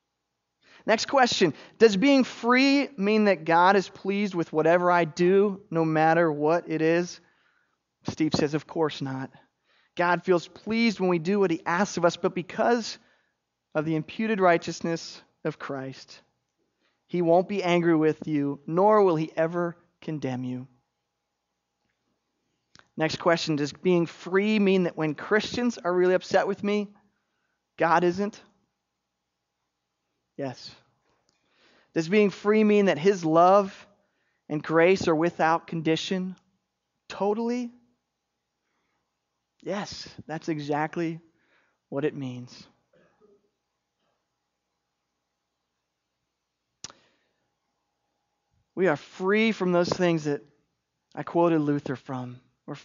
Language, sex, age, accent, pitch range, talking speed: English, male, 30-49, American, 150-195 Hz, 115 wpm